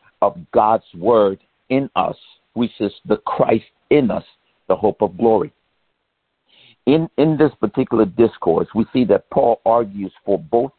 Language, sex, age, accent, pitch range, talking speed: English, male, 60-79, American, 110-135 Hz, 150 wpm